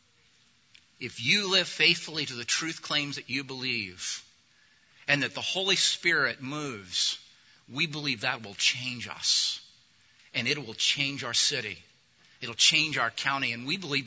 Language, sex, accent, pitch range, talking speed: English, male, American, 125-185 Hz, 160 wpm